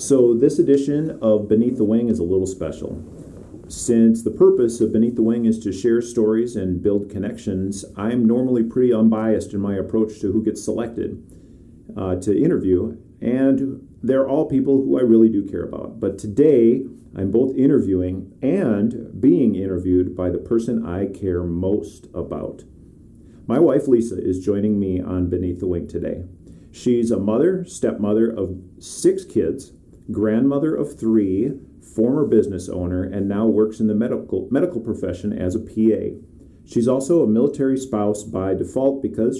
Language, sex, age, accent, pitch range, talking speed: English, male, 40-59, American, 95-120 Hz, 165 wpm